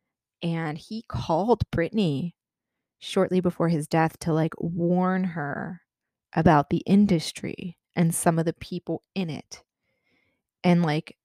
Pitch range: 165-190 Hz